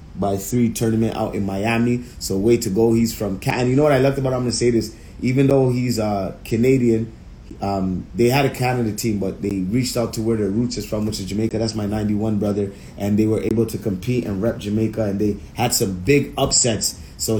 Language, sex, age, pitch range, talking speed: English, male, 30-49, 105-125 Hz, 230 wpm